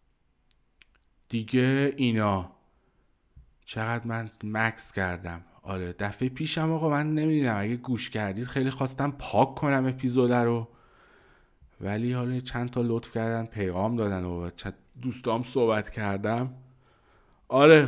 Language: Persian